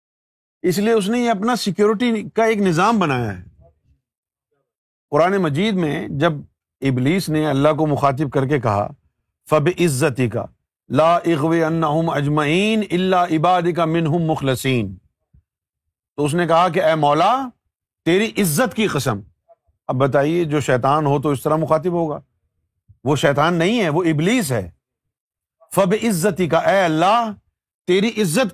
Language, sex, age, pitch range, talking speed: Urdu, male, 50-69, 135-210 Hz, 145 wpm